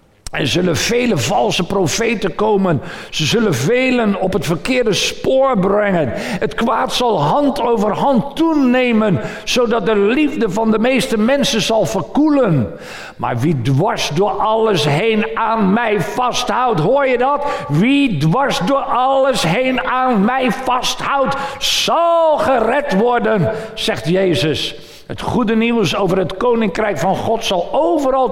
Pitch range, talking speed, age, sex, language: 185-250 Hz, 140 wpm, 50-69, male, Dutch